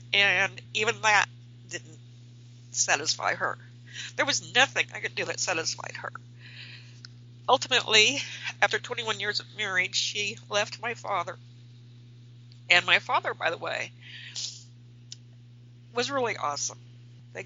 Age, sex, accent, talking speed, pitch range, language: 60-79, female, American, 120 wpm, 120-130 Hz, English